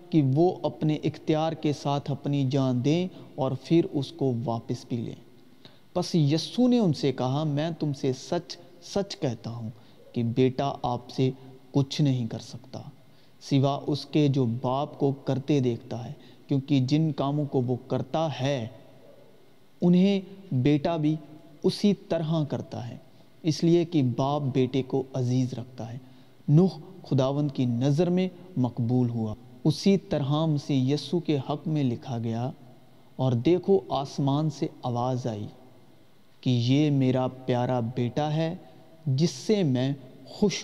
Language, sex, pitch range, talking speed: Urdu, male, 130-160 Hz, 150 wpm